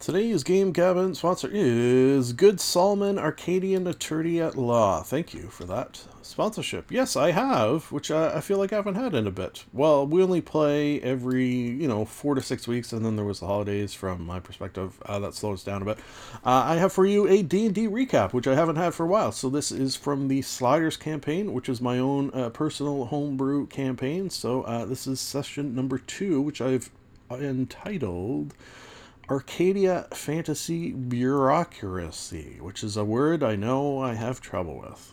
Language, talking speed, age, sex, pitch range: English, 190 wpm, 40-59, male, 115-160 Hz